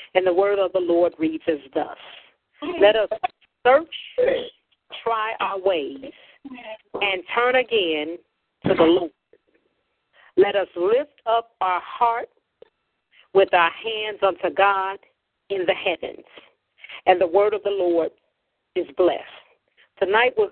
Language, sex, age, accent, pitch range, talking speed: English, female, 40-59, American, 170-235 Hz, 130 wpm